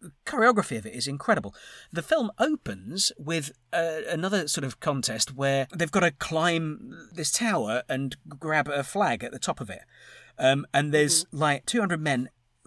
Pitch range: 125-170 Hz